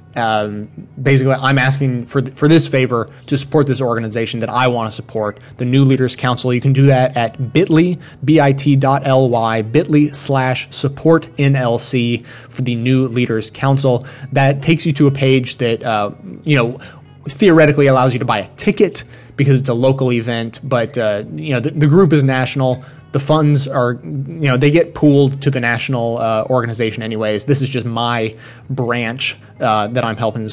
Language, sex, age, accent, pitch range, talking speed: English, male, 20-39, American, 120-140 Hz, 185 wpm